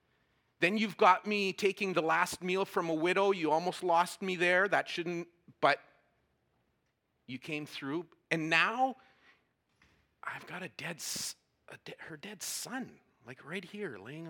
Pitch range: 115-175 Hz